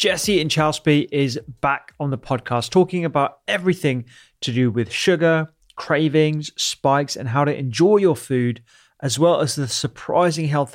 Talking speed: 155 wpm